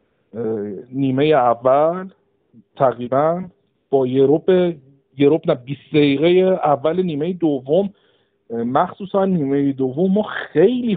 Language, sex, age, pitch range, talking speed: Persian, male, 50-69, 135-160 Hz, 95 wpm